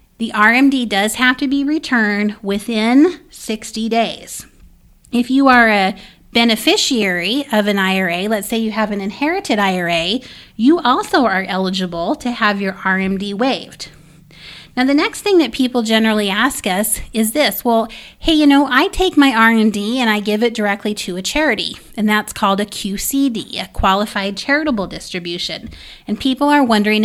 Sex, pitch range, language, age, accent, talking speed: female, 200-255 Hz, English, 30-49, American, 165 wpm